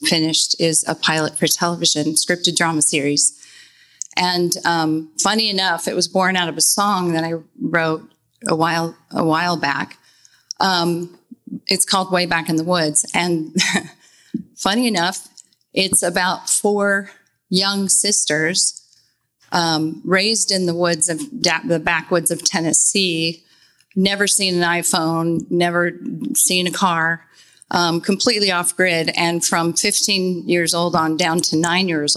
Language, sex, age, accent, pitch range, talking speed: English, female, 30-49, American, 160-190 Hz, 145 wpm